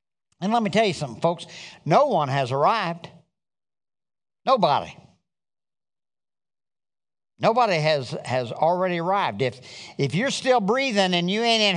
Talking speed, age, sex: 135 wpm, 50-69, male